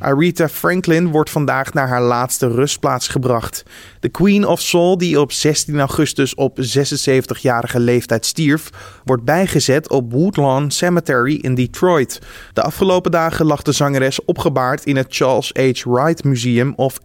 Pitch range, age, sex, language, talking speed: 125-165 Hz, 20-39, male, Dutch, 150 wpm